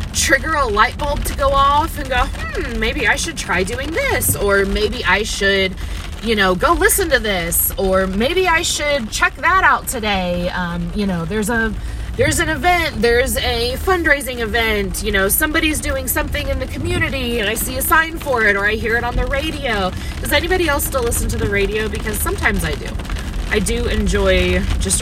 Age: 20-39